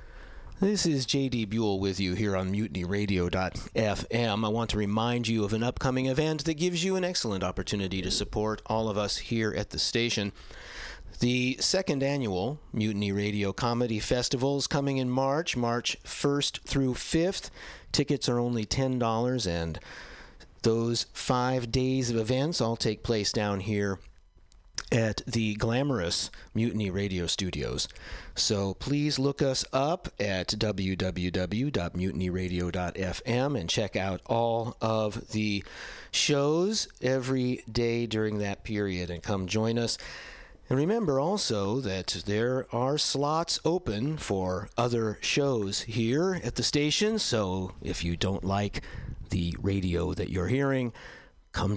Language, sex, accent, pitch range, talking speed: English, male, American, 100-130 Hz, 135 wpm